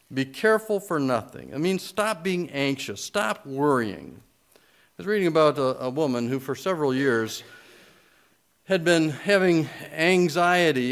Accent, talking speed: American, 145 wpm